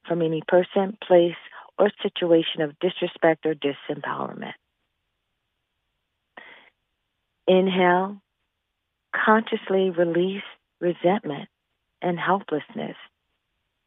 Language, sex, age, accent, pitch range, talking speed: English, female, 40-59, American, 150-180 Hz, 70 wpm